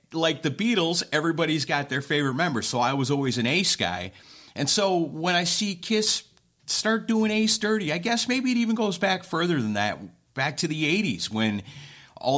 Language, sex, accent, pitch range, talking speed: English, male, American, 115-160 Hz, 200 wpm